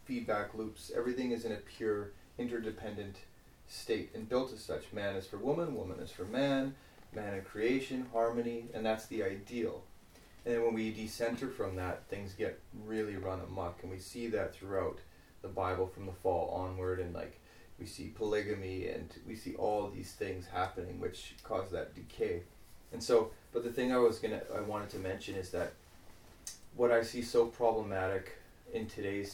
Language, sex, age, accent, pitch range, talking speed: English, male, 30-49, American, 100-120 Hz, 185 wpm